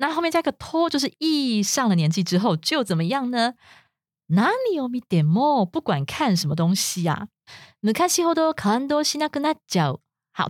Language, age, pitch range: Chinese, 20-39, 180-265 Hz